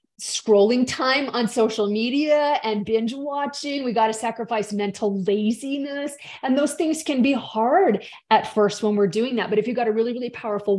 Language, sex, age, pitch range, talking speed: English, female, 30-49, 205-265 Hz, 190 wpm